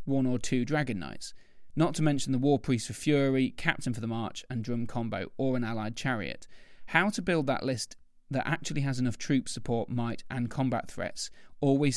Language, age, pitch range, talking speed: English, 30-49, 115-135 Hz, 200 wpm